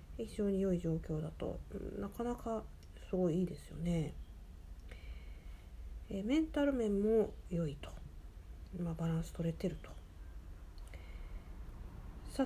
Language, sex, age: Japanese, female, 50-69